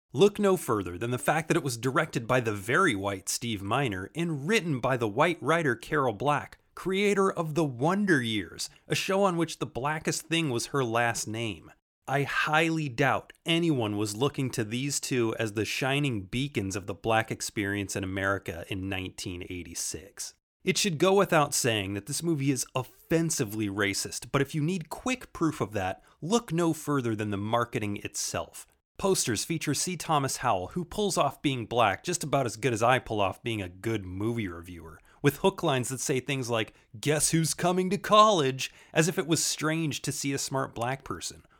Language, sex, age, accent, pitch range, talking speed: English, male, 30-49, American, 110-155 Hz, 190 wpm